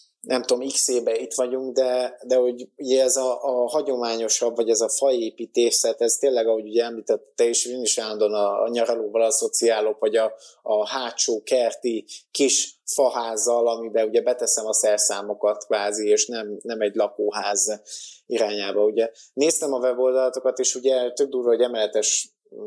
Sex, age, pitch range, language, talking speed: male, 20-39, 115-155 Hz, Hungarian, 160 wpm